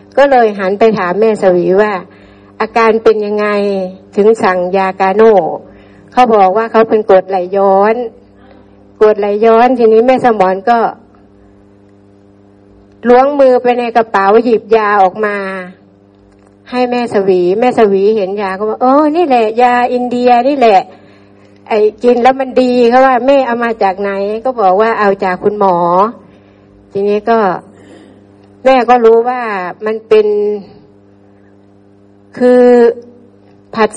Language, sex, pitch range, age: Thai, female, 175-225 Hz, 60-79